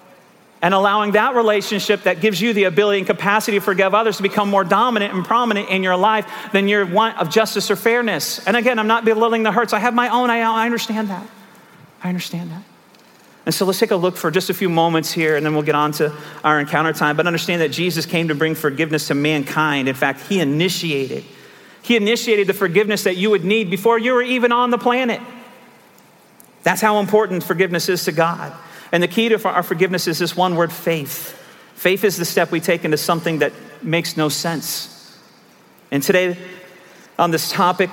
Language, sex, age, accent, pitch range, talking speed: English, male, 40-59, American, 160-205 Hz, 210 wpm